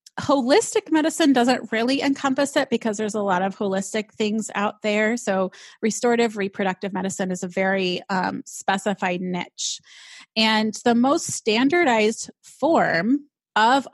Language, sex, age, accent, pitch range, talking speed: English, female, 30-49, American, 195-245 Hz, 135 wpm